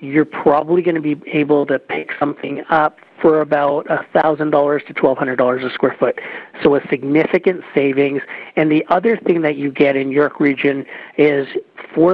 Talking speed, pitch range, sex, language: 165 wpm, 140-155 Hz, male, English